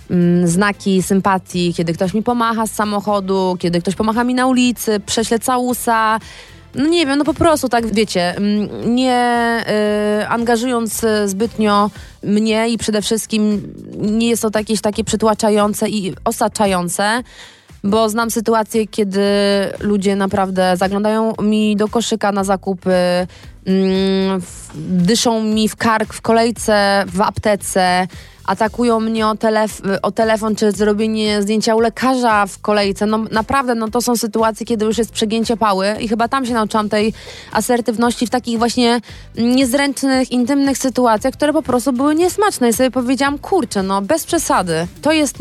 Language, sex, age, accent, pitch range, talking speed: Polish, female, 20-39, native, 205-235 Hz, 145 wpm